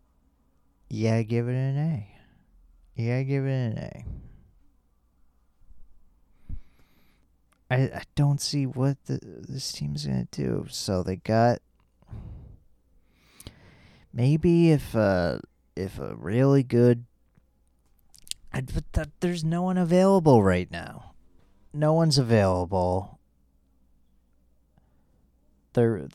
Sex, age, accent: male, 30-49, American